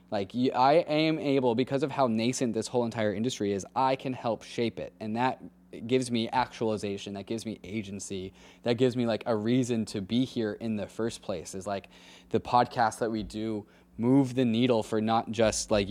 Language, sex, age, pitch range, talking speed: English, male, 20-39, 100-130 Hz, 205 wpm